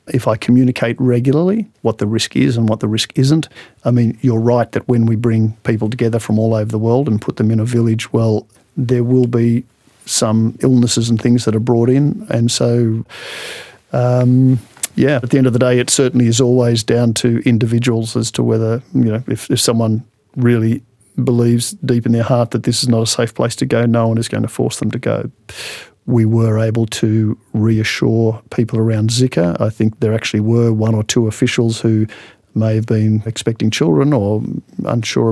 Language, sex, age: English, male, 50-69